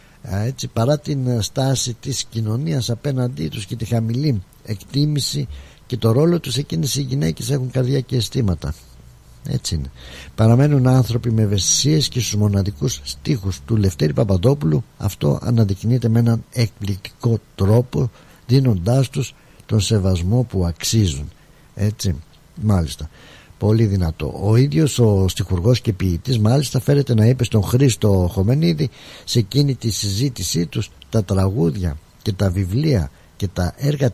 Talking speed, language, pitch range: 135 wpm, Greek, 95-130 Hz